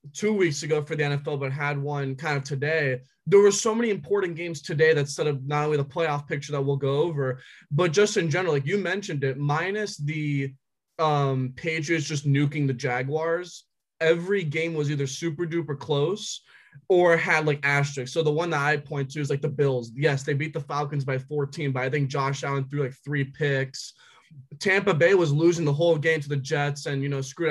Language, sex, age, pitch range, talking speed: English, male, 20-39, 140-165 Hz, 215 wpm